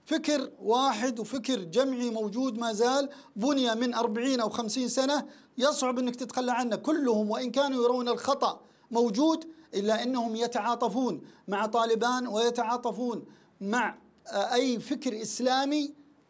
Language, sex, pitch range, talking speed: Arabic, male, 215-275 Hz, 120 wpm